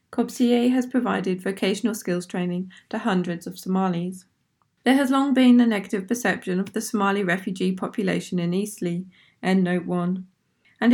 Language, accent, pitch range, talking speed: English, British, 185-230 Hz, 155 wpm